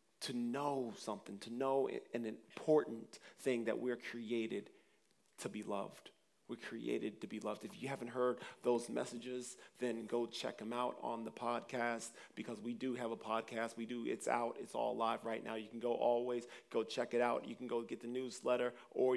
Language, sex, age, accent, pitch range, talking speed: English, male, 40-59, American, 115-125 Hz, 195 wpm